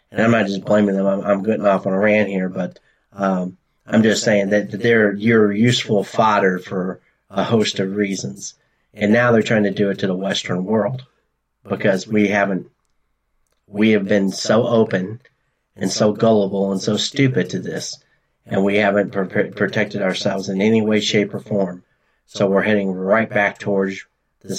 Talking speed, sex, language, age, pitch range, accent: 180 wpm, male, English, 40-59, 100-110 Hz, American